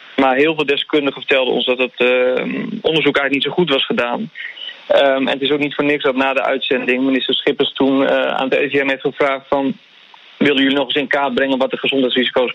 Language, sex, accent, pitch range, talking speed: Dutch, male, Dutch, 130-150 Hz, 225 wpm